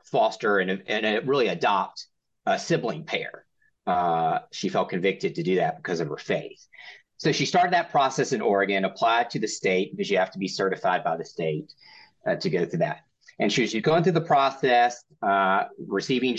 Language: English